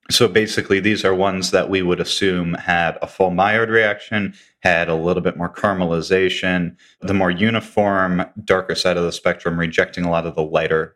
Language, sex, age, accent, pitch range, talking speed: English, male, 30-49, American, 85-100 Hz, 185 wpm